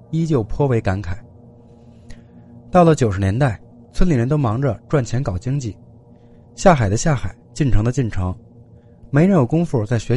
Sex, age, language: male, 20-39, Chinese